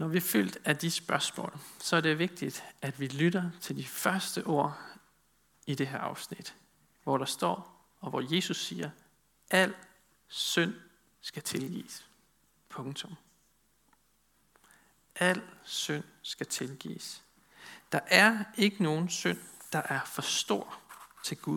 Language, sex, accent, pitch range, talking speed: Danish, male, native, 150-190 Hz, 135 wpm